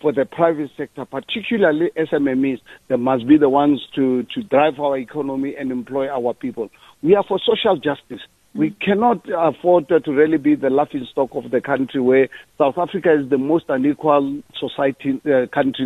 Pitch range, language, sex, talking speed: 135-175 Hz, English, male, 180 wpm